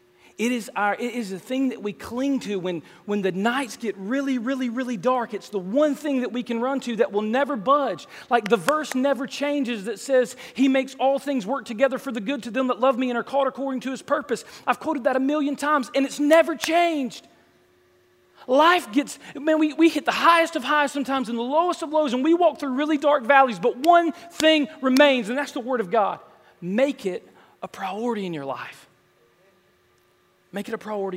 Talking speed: 220 wpm